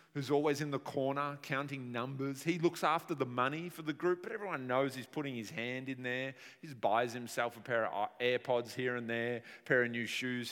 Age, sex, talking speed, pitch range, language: 30-49, male, 230 wpm, 130-185 Hz, English